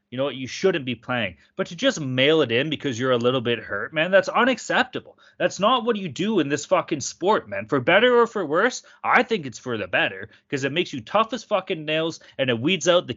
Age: 30-49